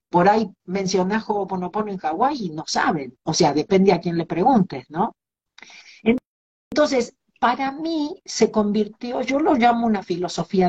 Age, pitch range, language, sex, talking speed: 50-69, 175-235 Hz, Spanish, female, 155 wpm